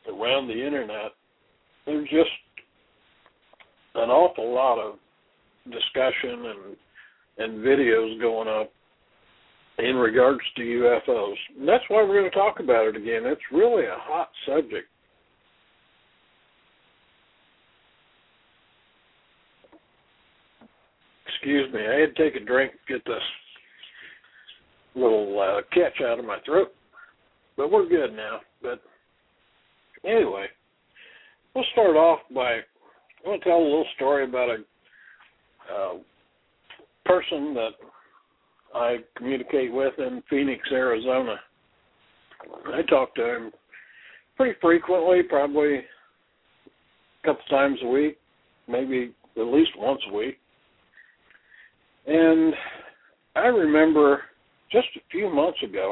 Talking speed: 115 wpm